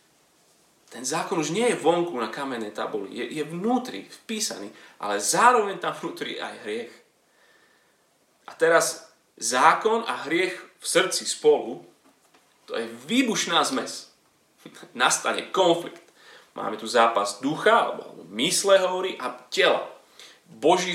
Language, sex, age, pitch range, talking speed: Slovak, male, 30-49, 155-235 Hz, 125 wpm